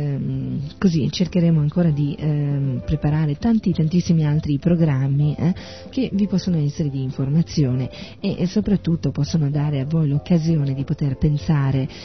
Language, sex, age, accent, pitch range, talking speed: Italian, female, 40-59, native, 135-165 Hz, 140 wpm